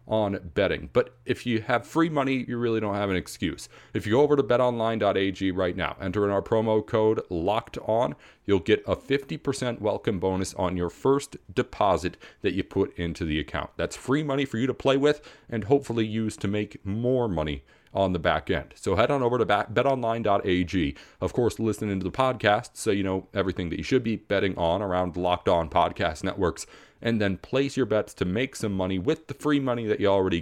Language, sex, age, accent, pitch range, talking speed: English, male, 40-59, American, 95-120 Hz, 210 wpm